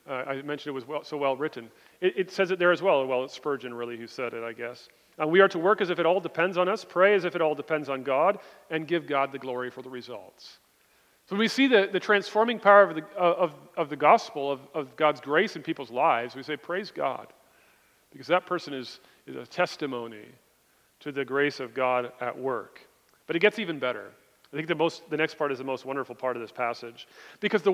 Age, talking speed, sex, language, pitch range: 40-59, 245 wpm, male, English, 140-190 Hz